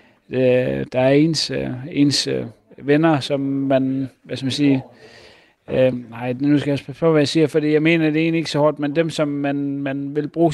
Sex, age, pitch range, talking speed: male, 30-49, 135-160 Hz, 205 wpm